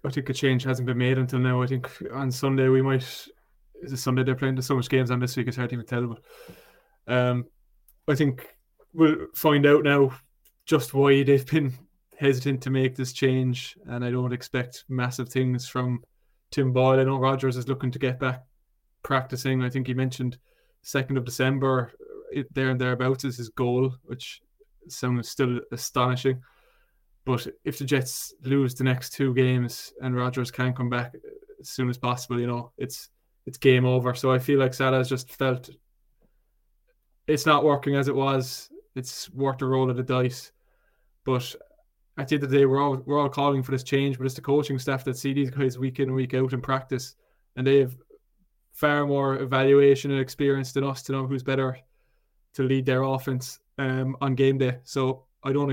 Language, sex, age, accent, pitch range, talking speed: English, male, 20-39, Irish, 125-140 Hz, 200 wpm